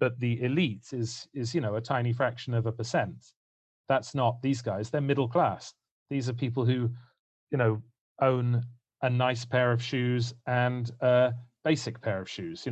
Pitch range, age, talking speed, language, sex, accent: 115-125 Hz, 30-49, 185 wpm, English, male, British